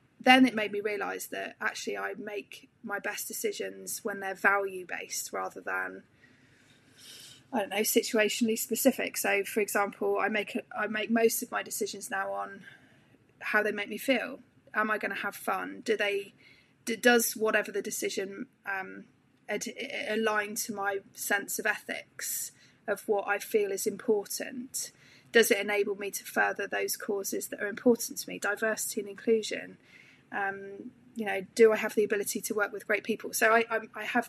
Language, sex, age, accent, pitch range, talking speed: English, female, 20-39, British, 200-230 Hz, 175 wpm